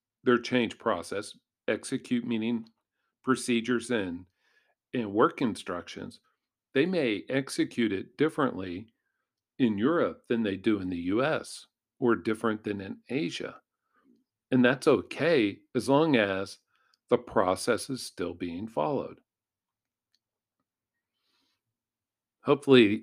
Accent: American